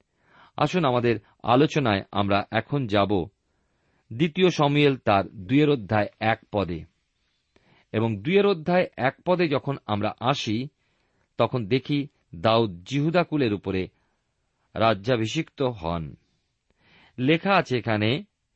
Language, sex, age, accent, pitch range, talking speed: Bengali, male, 50-69, native, 100-145 Hz, 100 wpm